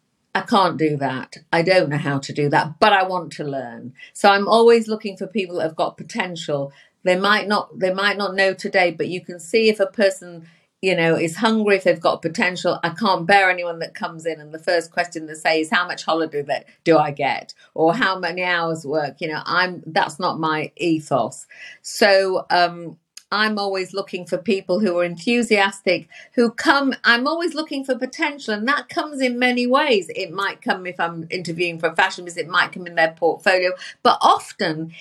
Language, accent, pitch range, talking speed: English, British, 165-230 Hz, 210 wpm